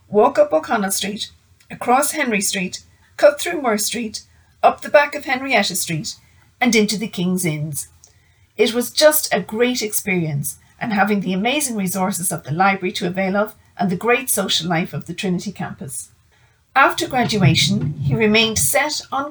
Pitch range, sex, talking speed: 170-225 Hz, female, 170 wpm